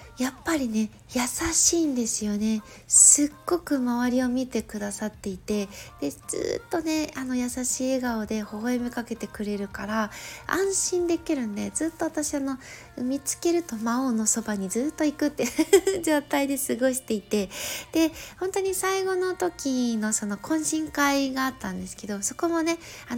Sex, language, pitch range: female, Japanese, 215-305 Hz